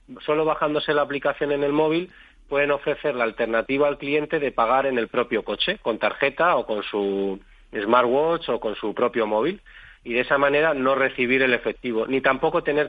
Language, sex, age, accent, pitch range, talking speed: Spanish, male, 30-49, Spanish, 115-140 Hz, 190 wpm